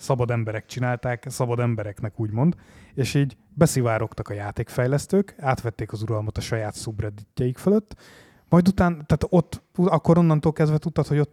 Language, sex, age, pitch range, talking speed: Hungarian, male, 20-39, 115-155 Hz, 150 wpm